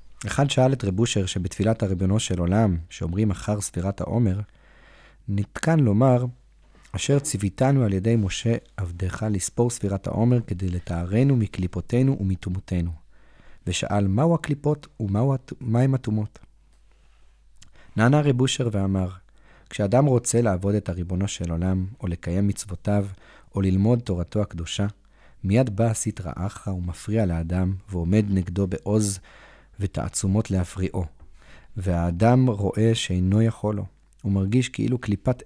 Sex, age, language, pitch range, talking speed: male, 30-49, Hebrew, 95-115 Hz, 115 wpm